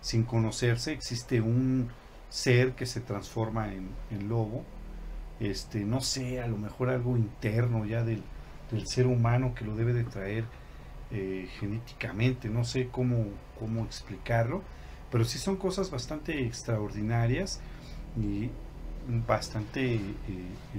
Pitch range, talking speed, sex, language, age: 110-125 Hz, 130 wpm, male, Spanish, 40-59